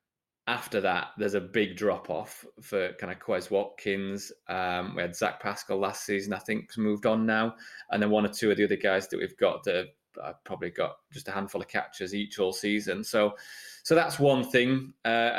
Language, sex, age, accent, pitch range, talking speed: English, male, 20-39, British, 105-130 Hz, 205 wpm